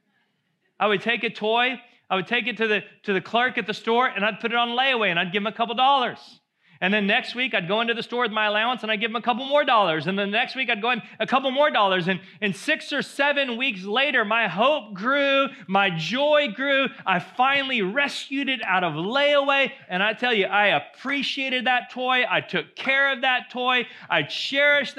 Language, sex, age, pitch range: English, male, 30-49, 175-245 Hz